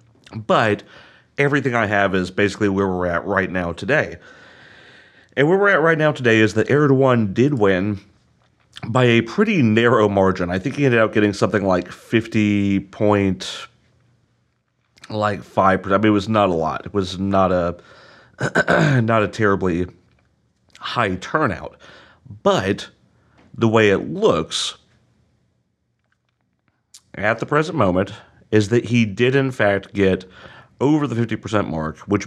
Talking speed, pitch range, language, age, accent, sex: 145 wpm, 95-115 Hz, English, 40-59, American, male